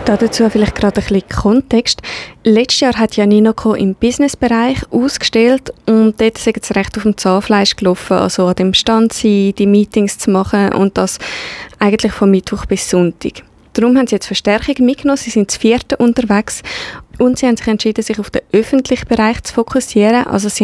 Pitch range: 205-245 Hz